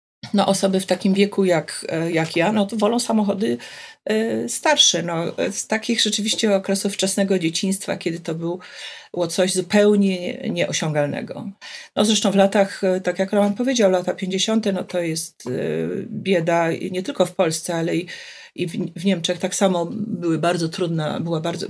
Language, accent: Polish, native